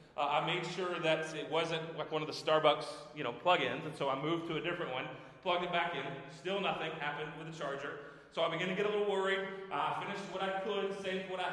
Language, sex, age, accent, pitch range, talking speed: English, male, 30-49, American, 150-185 Hz, 260 wpm